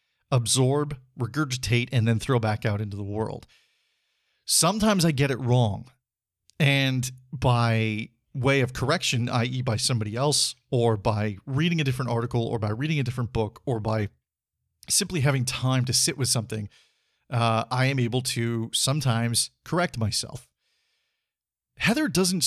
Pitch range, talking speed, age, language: 115-150 Hz, 145 wpm, 40-59, English